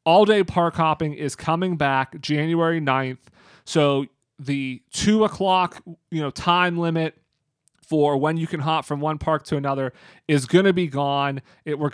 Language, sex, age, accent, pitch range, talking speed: English, male, 30-49, American, 140-165 Hz, 150 wpm